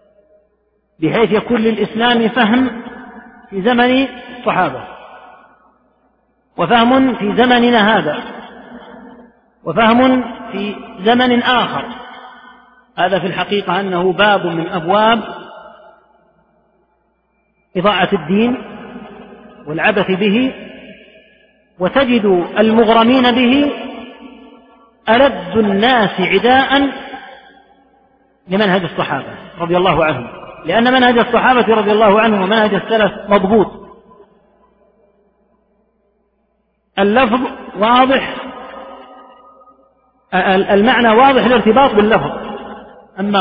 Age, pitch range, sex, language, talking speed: 40-59, 195-240 Hz, male, Arabic, 75 wpm